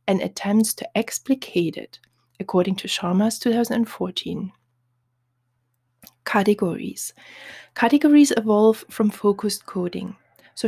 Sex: female